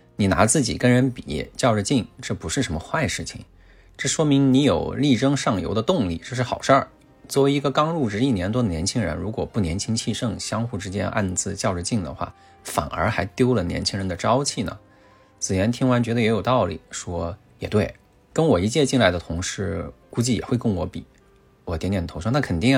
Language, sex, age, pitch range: Chinese, male, 20-39, 95-125 Hz